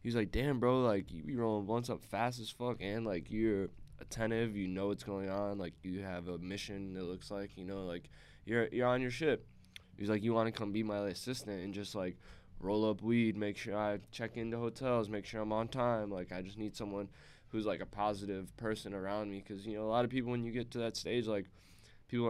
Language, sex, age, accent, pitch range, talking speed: English, male, 10-29, American, 95-110 Hz, 245 wpm